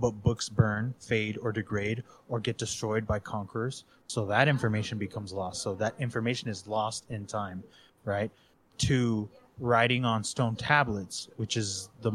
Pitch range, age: 105-120 Hz, 20-39